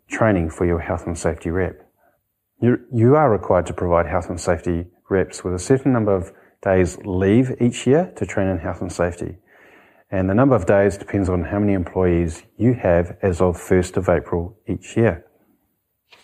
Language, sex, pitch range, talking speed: English, male, 90-115 Hz, 185 wpm